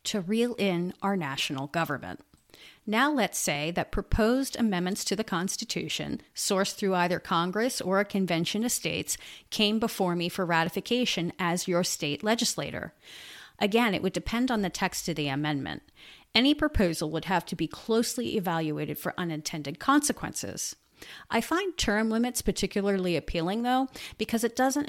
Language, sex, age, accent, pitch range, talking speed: English, female, 40-59, American, 170-230 Hz, 155 wpm